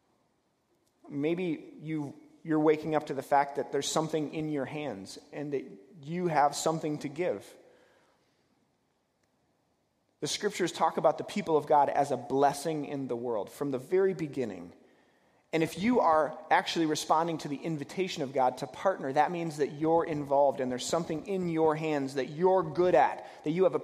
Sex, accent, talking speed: male, American, 180 wpm